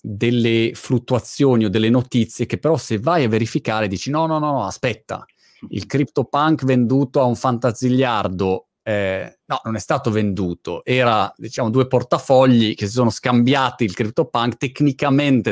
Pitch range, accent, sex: 110-135 Hz, native, male